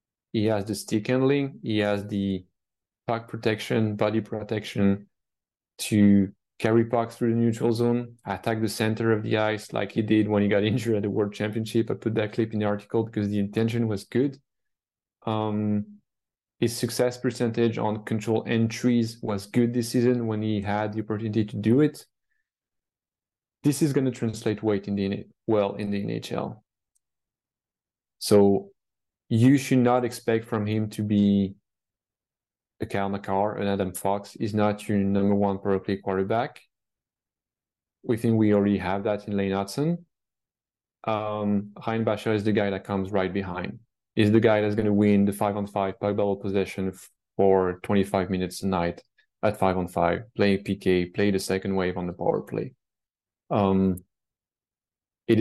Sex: male